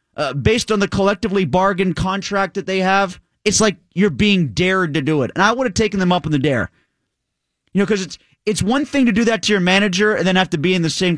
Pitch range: 170-225 Hz